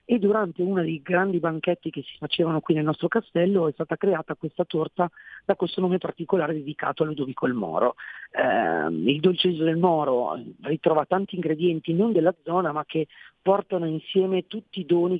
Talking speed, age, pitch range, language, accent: 180 wpm, 40-59, 150-180 Hz, Italian, native